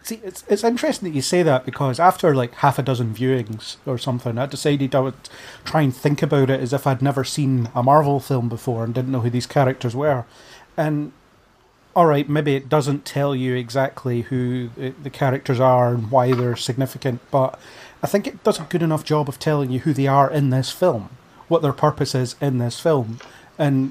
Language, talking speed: English, 215 wpm